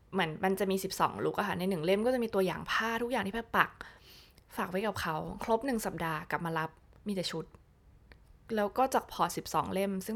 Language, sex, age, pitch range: Thai, female, 20-39, 175-235 Hz